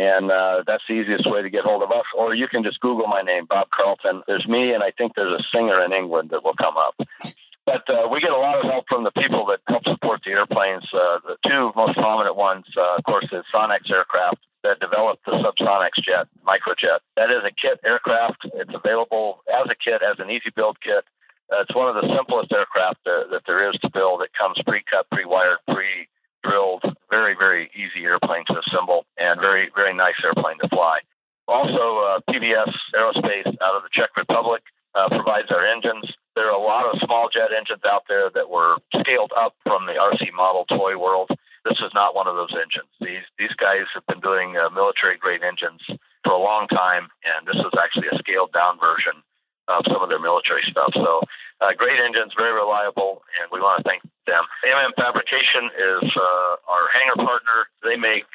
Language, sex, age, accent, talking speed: English, male, 50-69, American, 205 wpm